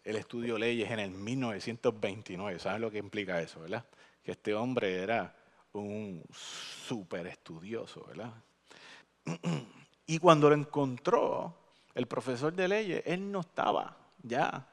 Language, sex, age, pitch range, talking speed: English, male, 30-49, 110-165 Hz, 130 wpm